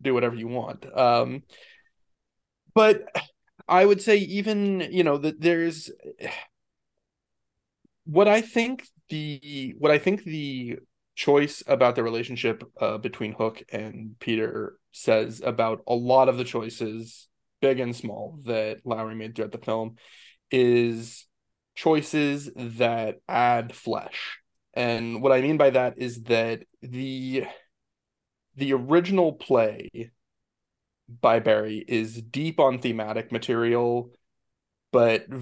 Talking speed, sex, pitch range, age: 120 wpm, male, 115-135 Hz, 20-39